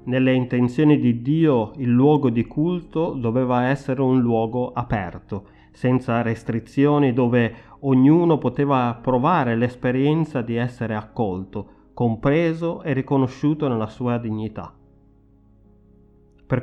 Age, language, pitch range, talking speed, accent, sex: 30-49, Italian, 110-140 Hz, 110 wpm, native, male